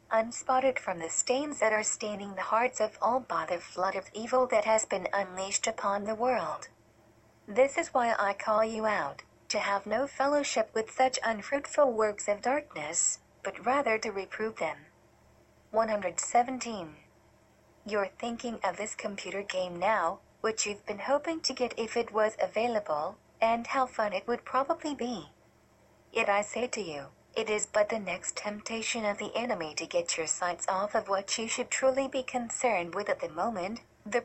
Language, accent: English, American